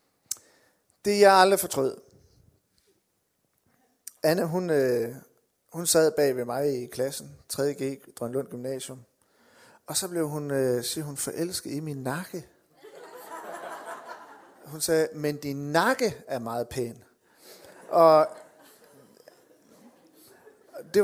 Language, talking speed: Danish, 110 wpm